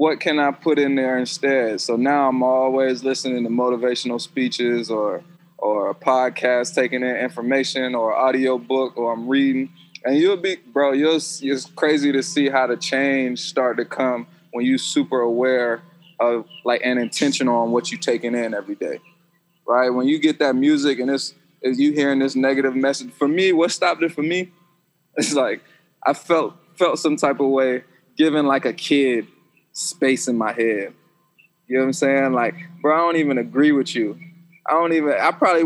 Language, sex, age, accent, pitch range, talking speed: English, male, 20-39, American, 130-160 Hz, 190 wpm